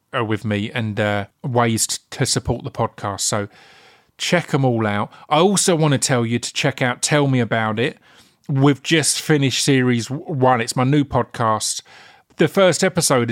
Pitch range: 115-150 Hz